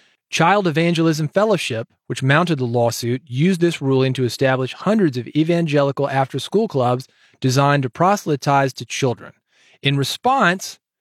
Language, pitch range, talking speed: English, 135-170 Hz, 130 wpm